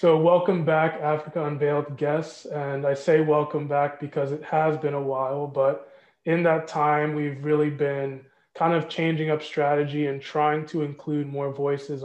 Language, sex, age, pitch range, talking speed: English, male, 20-39, 140-155 Hz, 175 wpm